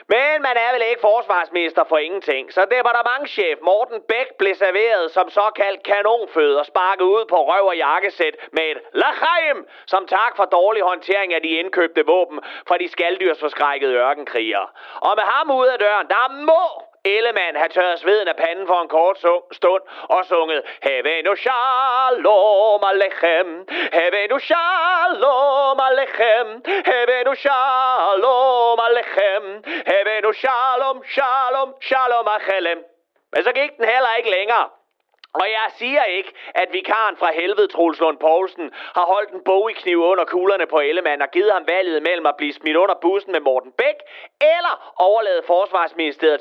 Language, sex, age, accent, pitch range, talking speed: Danish, male, 40-59, native, 180-270 Hz, 160 wpm